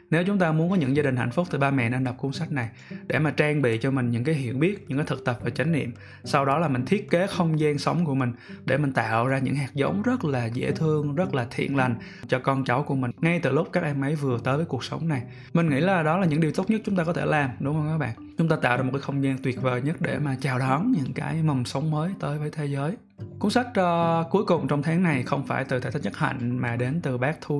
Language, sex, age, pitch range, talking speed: Vietnamese, male, 20-39, 130-165 Hz, 300 wpm